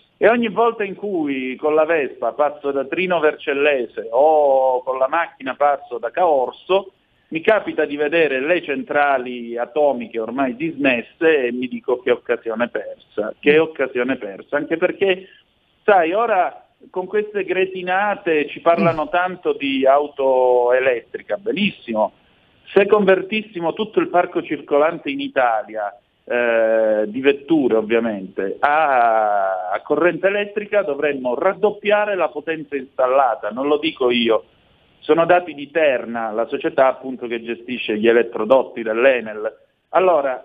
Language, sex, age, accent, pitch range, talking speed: Italian, male, 50-69, native, 125-190 Hz, 130 wpm